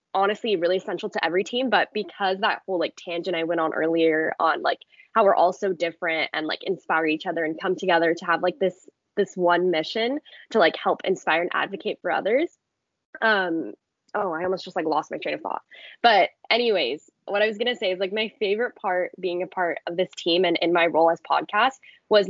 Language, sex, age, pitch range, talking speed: English, female, 10-29, 175-215 Hz, 220 wpm